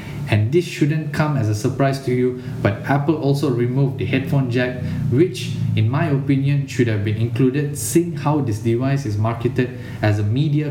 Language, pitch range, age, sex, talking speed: English, 115-145 Hz, 20-39, male, 185 wpm